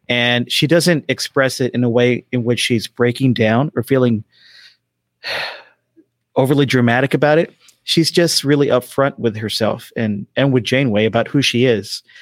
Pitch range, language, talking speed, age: 120-155 Hz, English, 160 wpm, 40-59